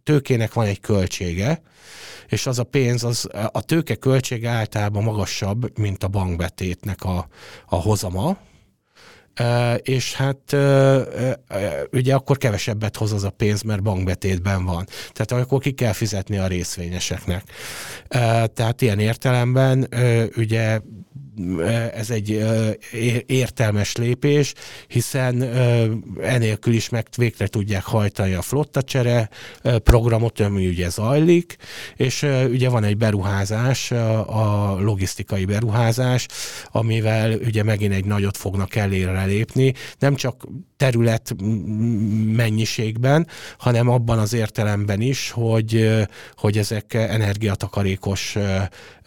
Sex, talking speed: male, 115 wpm